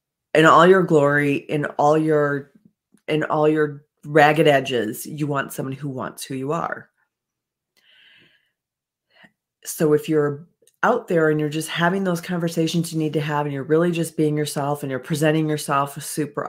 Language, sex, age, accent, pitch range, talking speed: English, female, 40-59, American, 150-215 Hz, 165 wpm